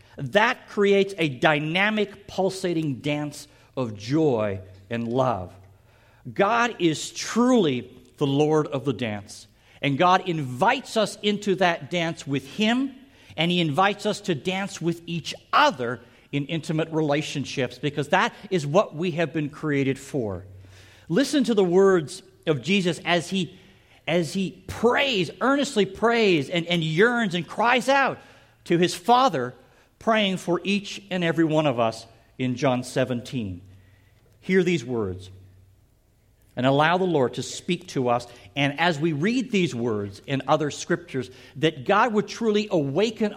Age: 50-69